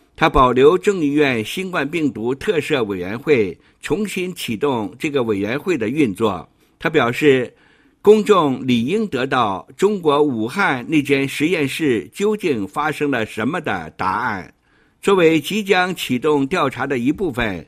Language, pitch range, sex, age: Chinese, 125-180 Hz, male, 60-79